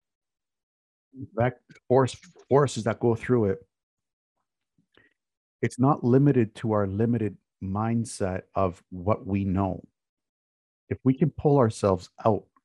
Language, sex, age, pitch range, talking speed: English, male, 50-69, 95-115 Hz, 115 wpm